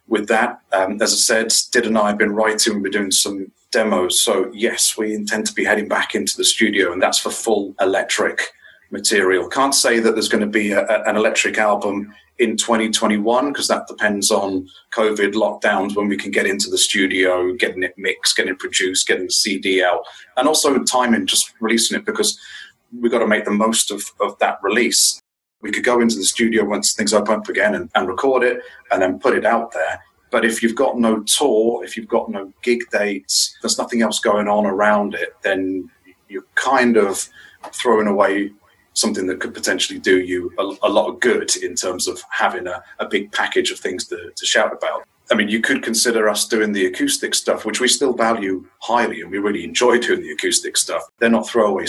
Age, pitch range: 30-49, 100-135 Hz